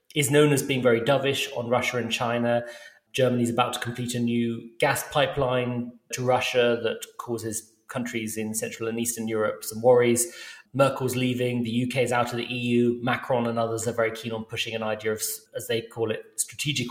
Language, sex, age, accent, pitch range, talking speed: English, male, 30-49, British, 115-135 Hz, 200 wpm